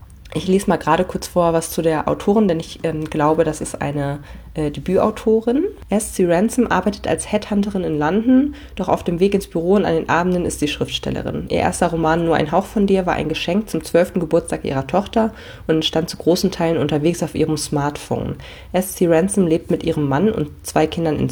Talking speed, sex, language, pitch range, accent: 210 wpm, female, German, 155-180 Hz, German